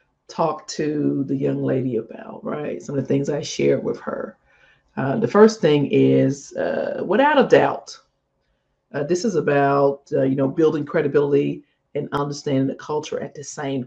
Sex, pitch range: female, 140-185 Hz